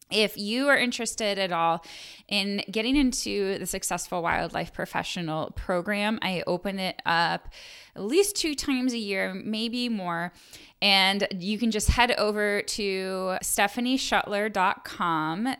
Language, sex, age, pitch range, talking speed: English, female, 10-29, 180-220 Hz, 130 wpm